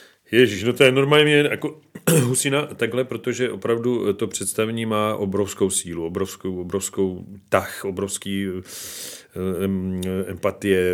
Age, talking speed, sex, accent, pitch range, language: 40-59, 115 wpm, male, native, 95-120 Hz, Czech